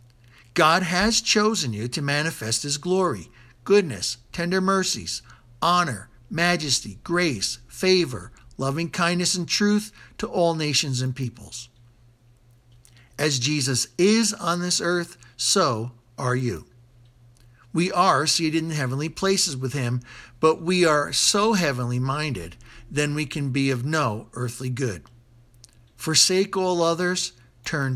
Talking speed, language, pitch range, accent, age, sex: 125 wpm, English, 120-175 Hz, American, 60-79, male